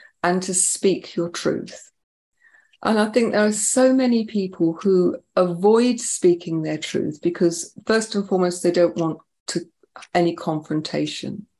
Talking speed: 145 wpm